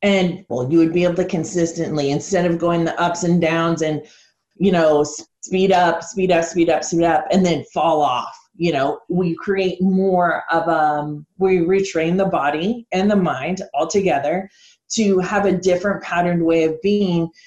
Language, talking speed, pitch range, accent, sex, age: English, 185 wpm, 160-190 Hz, American, female, 30-49